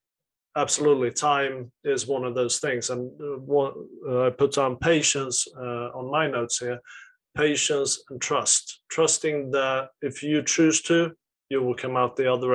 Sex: male